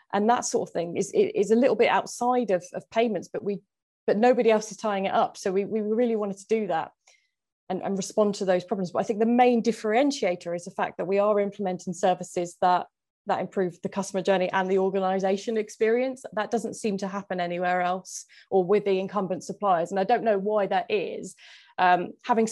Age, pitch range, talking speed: 20-39, 185-225 Hz, 220 wpm